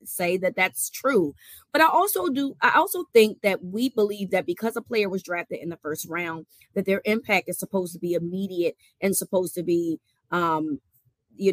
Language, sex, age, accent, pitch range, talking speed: English, female, 30-49, American, 175-225 Hz, 200 wpm